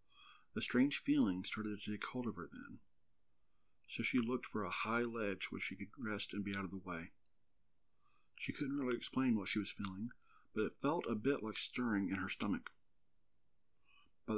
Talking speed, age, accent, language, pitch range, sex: 190 wpm, 40-59, American, English, 100-120 Hz, male